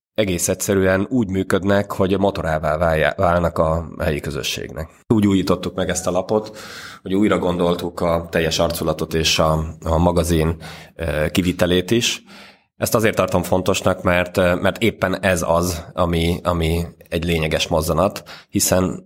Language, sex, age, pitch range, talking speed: Hungarian, male, 20-39, 80-95 Hz, 140 wpm